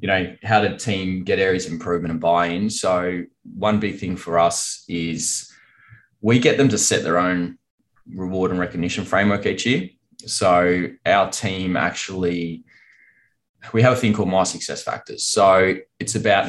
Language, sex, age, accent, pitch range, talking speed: English, male, 20-39, Australian, 90-115 Hz, 165 wpm